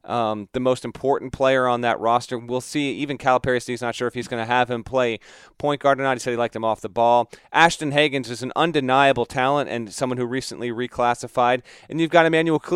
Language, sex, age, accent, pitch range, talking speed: English, male, 30-49, American, 120-150 Hz, 230 wpm